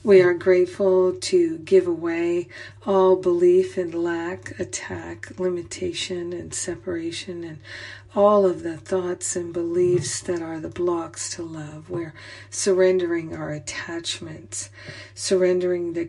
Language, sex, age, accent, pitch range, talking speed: English, female, 50-69, American, 155-180 Hz, 125 wpm